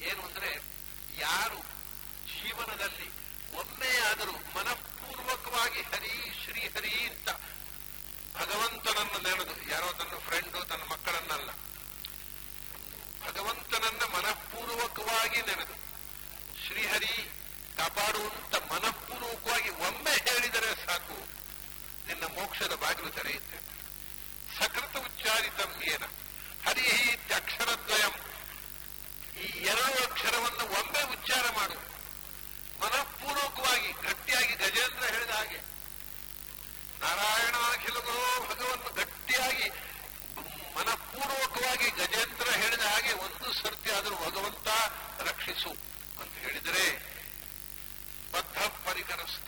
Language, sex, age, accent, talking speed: English, male, 60-79, Indian, 70 wpm